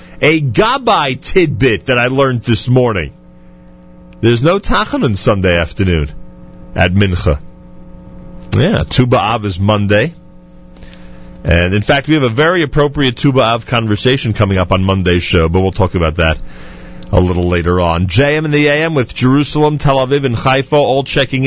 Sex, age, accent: male, 40-59, American